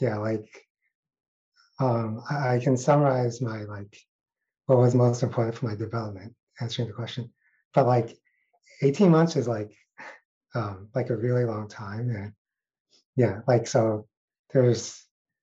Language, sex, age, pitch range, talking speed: English, male, 30-49, 110-130 Hz, 140 wpm